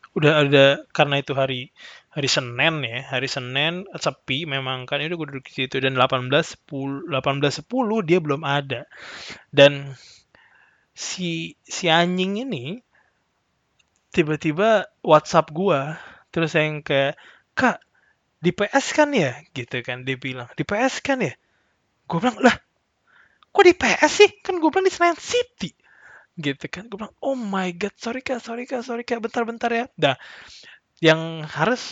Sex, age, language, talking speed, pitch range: male, 20-39, Indonesian, 150 wpm, 140-195 Hz